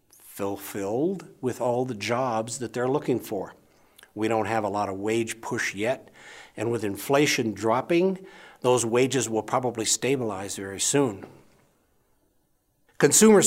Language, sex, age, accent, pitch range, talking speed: English, male, 60-79, American, 110-140 Hz, 135 wpm